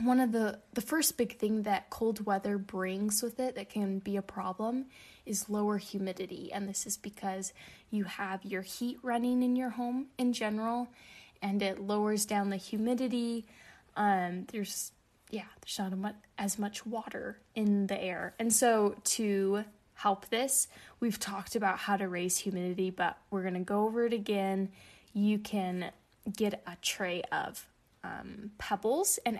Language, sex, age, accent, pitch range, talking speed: English, female, 10-29, American, 190-225 Hz, 165 wpm